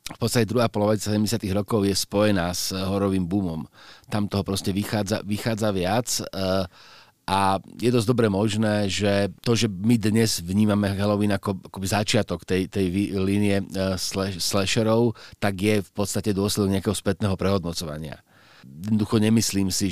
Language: Slovak